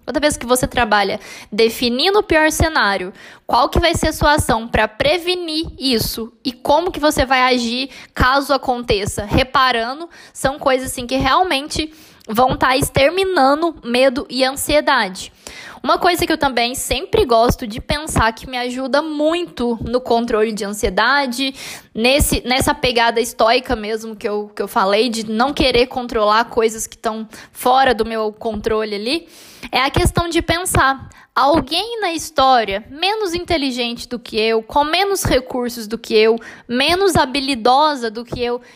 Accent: Brazilian